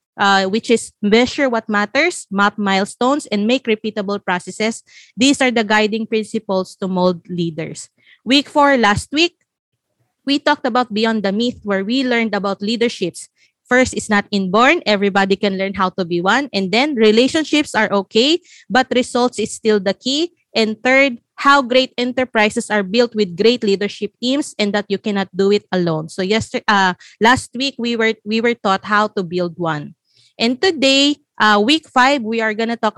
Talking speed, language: 180 wpm, Filipino